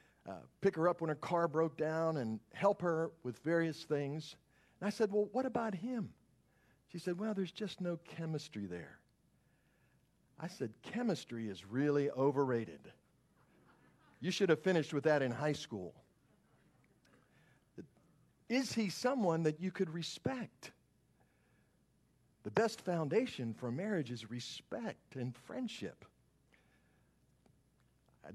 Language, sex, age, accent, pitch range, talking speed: English, male, 50-69, American, 115-175 Hz, 130 wpm